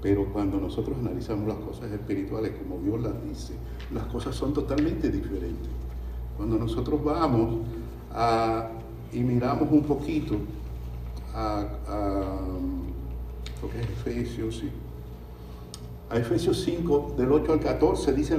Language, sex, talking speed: Spanish, male, 105 wpm